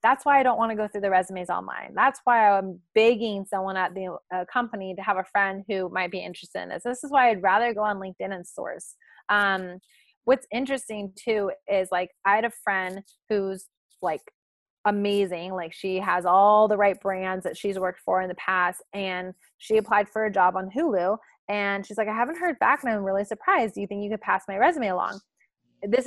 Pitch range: 190-235 Hz